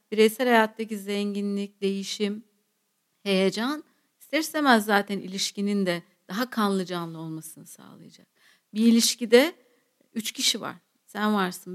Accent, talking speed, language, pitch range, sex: native, 105 wpm, Turkish, 190-245 Hz, female